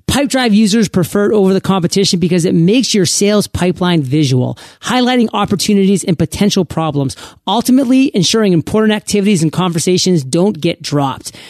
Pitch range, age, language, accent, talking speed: 175-215 Hz, 30-49, English, American, 145 wpm